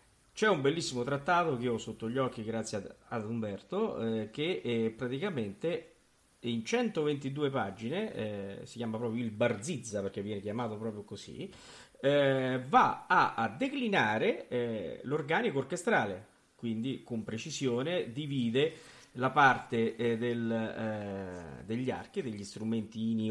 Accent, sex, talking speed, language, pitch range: native, male, 135 wpm, Italian, 110-145 Hz